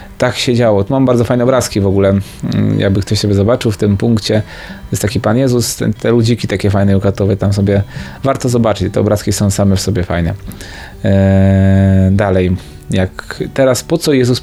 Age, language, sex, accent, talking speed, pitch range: 20-39, Polish, male, native, 185 wpm, 100-130 Hz